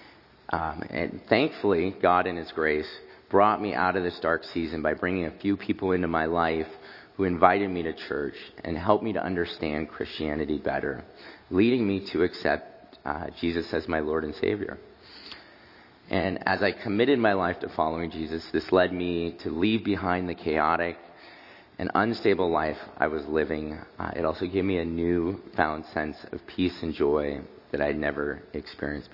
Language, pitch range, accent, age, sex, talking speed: English, 80-95 Hz, American, 30-49, male, 175 wpm